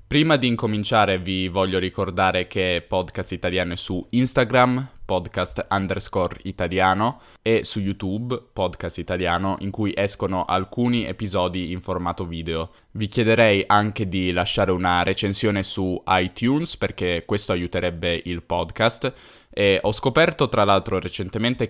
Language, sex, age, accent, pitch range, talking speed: Italian, male, 10-29, native, 90-110 Hz, 135 wpm